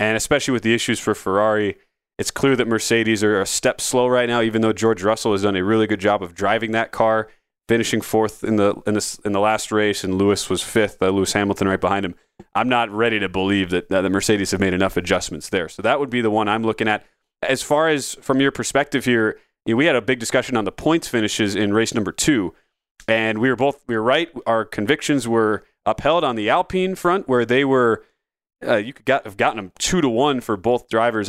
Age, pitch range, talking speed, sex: 30-49, 105-125 Hz, 245 wpm, male